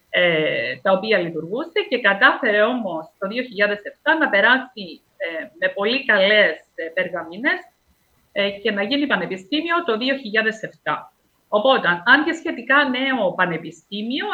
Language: Greek